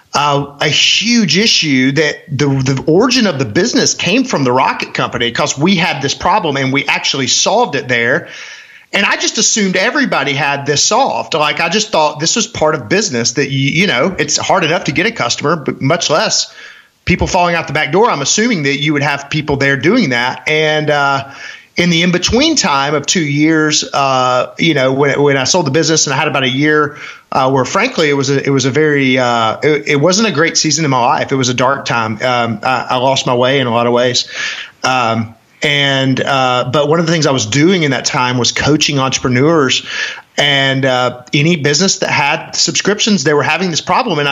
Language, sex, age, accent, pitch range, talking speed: English, male, 30-49, American, 140-180 Hz, 225 wpm